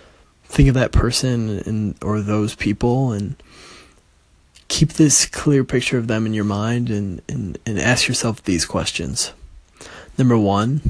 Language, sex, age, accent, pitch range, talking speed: English, male, 20-39, American, 90-120 Hz, 150 wpm